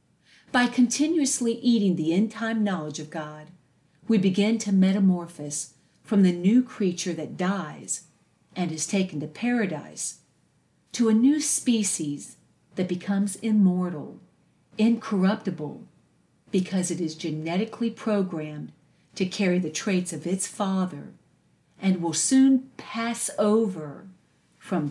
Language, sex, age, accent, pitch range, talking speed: English, female, 50-69, American, 165-215 Hz, 120 wpm